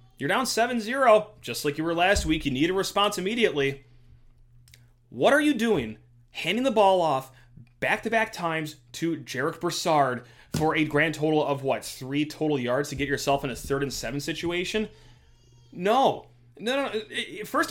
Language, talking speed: English, 165 wpm